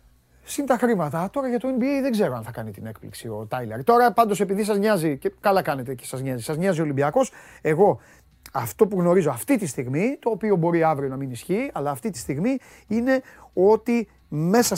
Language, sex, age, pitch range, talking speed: Greek, male, 30-49, 135-220 Hz, 210 wpm